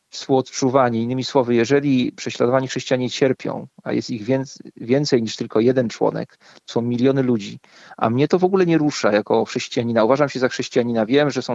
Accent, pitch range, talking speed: native, 120-140 Hz, 185 wpm